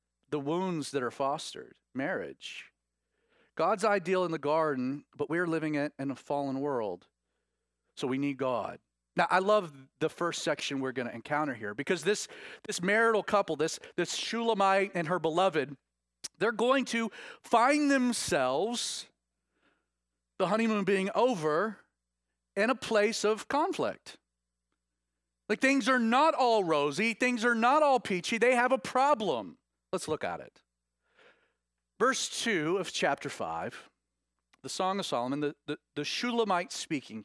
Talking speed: 145 wpm